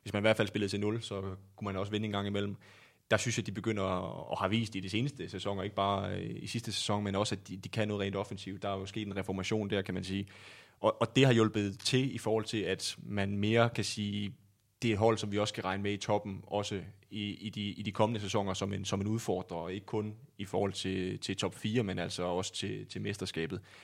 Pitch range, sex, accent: 100-115 Hz, male, native